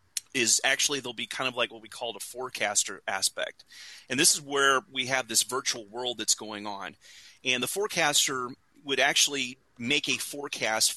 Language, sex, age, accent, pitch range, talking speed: English, male, 30-49, American, 115-135 Hz, 180 wpm